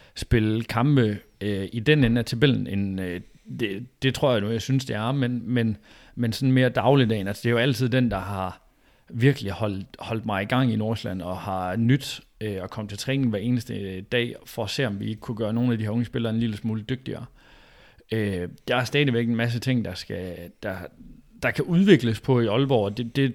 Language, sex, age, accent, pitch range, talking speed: Danish, male, 30-49, native, 105-125 Hz, 230 wpm